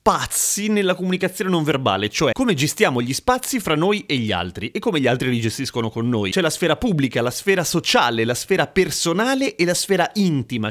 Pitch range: 115-165 Hz